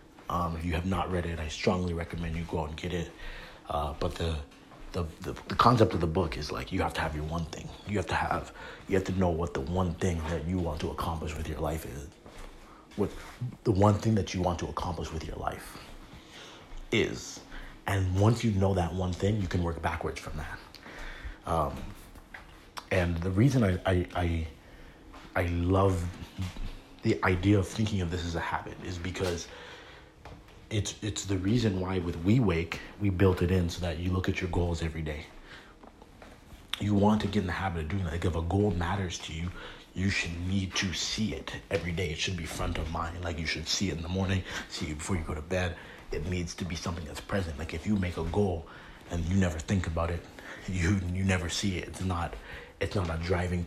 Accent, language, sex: American, English, male